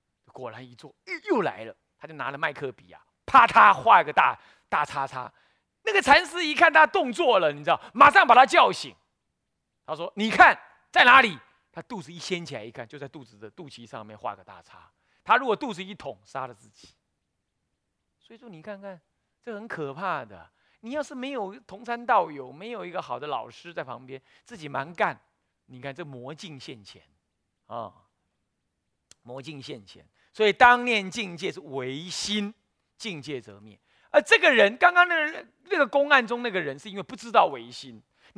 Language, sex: Chinese, male